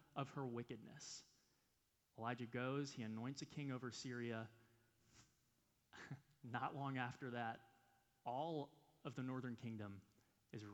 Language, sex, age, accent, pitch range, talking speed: English, male, 30-49, American, 115-140 Hz, 115 wpm